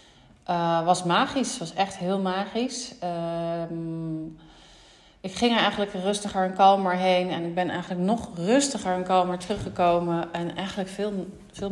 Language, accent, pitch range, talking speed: Dutch, Dutch, 175-195 Hz, 155 wpm